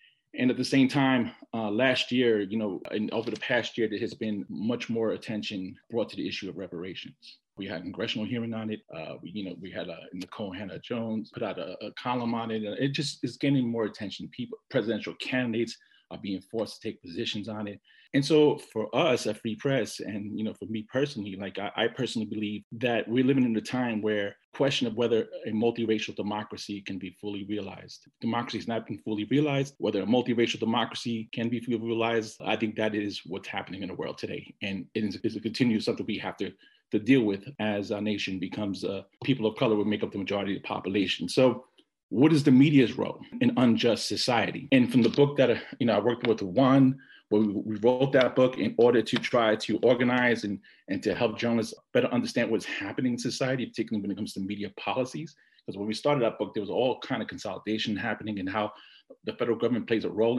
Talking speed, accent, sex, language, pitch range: 220 wpm, American, male, English, 105-125 Hz